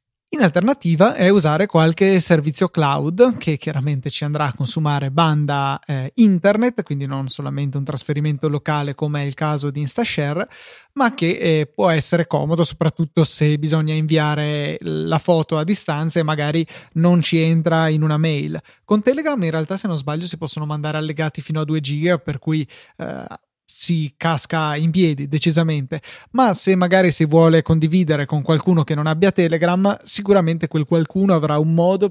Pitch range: 150-175 Hz